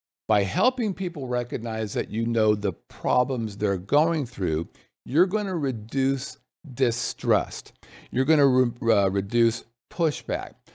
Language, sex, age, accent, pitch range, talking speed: English, male, 50-69, American, 110-145 Hz, 110 wpm